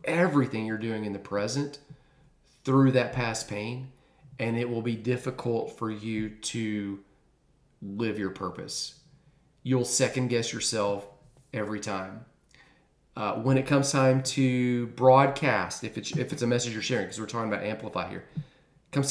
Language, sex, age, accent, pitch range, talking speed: English, male, 40-59, American, 110-140 Hz, 155 wpm